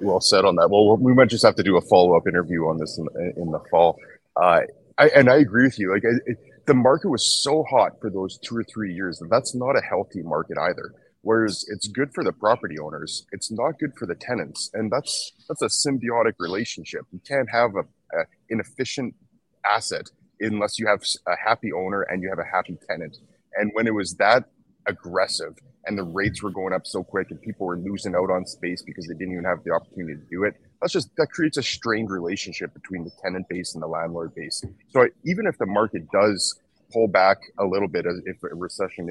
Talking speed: 225 wpm